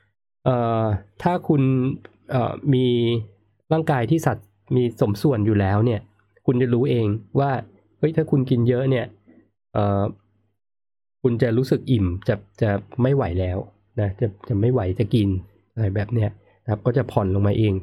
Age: 20-39